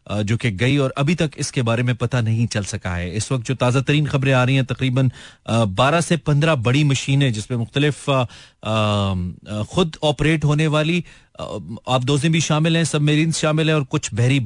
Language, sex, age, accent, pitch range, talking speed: Hindi, male, 30-49, native, 105-135 Hz, 190 wpm